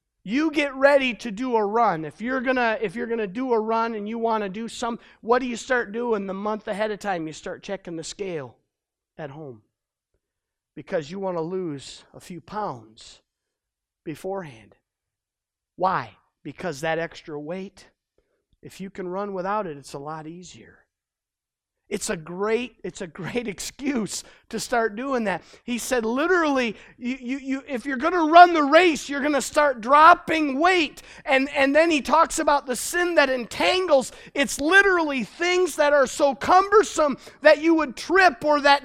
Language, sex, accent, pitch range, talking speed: English, male, American, 205-300 Hz, 175 wpm